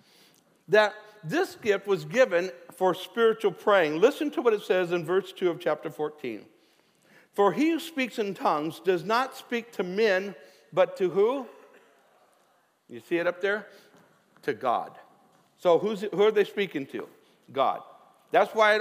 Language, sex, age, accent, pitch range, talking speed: English, male, 60-79, American, 180-240 Hz, 160 wpm